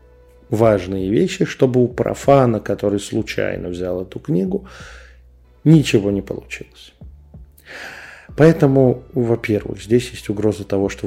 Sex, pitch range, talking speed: male, 95-125 Hz, 110 wpm